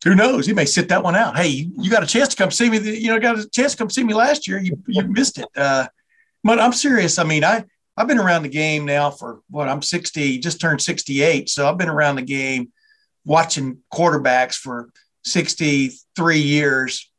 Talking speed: 215 wpm